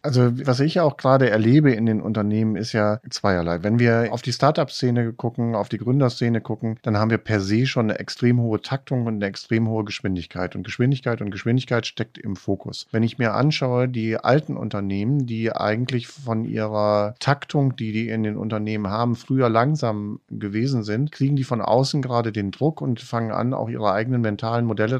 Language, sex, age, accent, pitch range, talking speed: German, male, 40-59, German, 110-135 Hz, 195 wpm